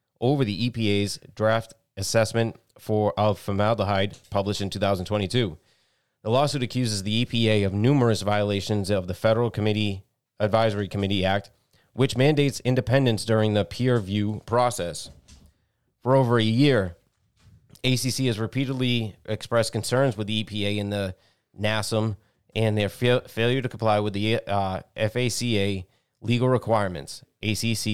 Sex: male